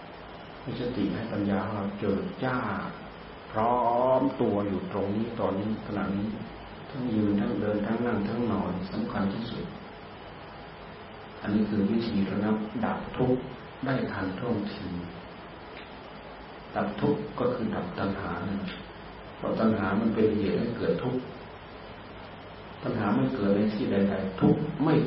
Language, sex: Thai, male